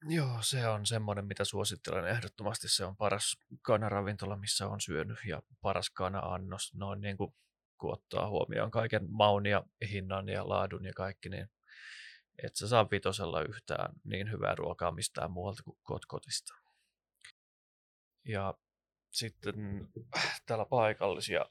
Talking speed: 130 wpm